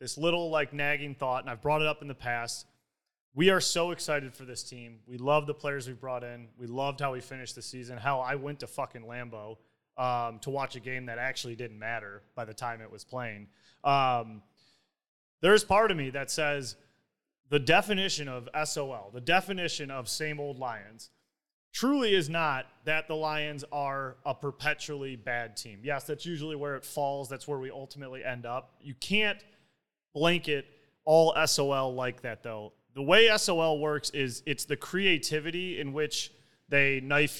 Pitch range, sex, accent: 125-150 Hz, male, American